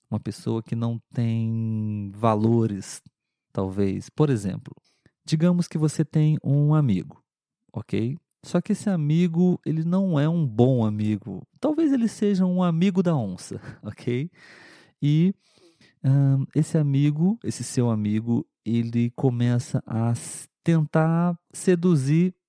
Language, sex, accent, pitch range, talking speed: Portuguese, male, Brazilian, 115-155 Hz, 125 wpm